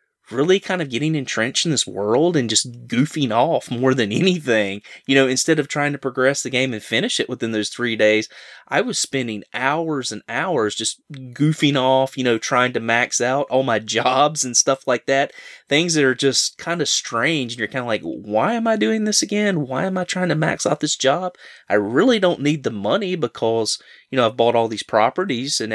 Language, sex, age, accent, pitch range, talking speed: English, male, 20-39, American, 110-140 Hz, 220 wpm